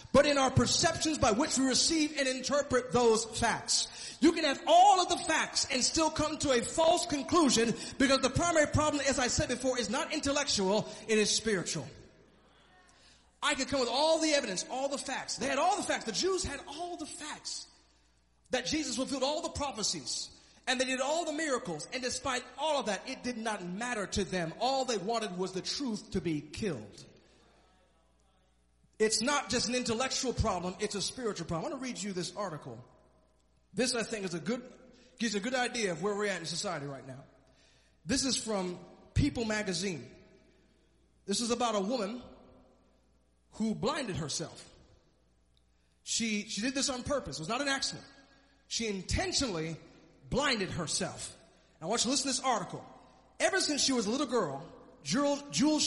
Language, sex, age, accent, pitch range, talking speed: English, male, 30-49, American, 180-275 Hz, 185 wpm